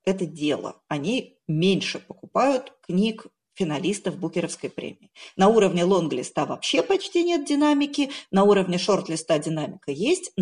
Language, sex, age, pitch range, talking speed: Russian, female, 40-59, 170-235 Hz, 120 wpm